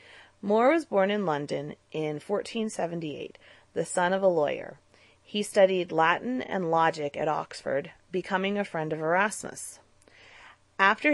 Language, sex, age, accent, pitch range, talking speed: English, female, 30-49, American, 155-205 Hz, 135 wpm